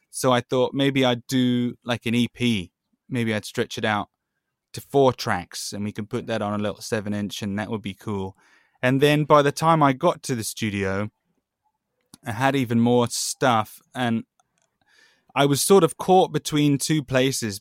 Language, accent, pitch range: English, British, 105-130 Hz